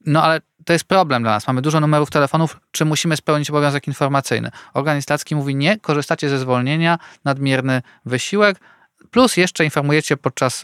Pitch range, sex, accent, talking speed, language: 130-160 Hz, male, native, 160 wpm, Polish